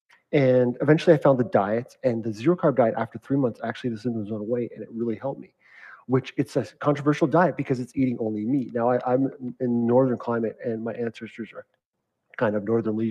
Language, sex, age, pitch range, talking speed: English, male, 30-49, 115-145 Hz, 215 wpm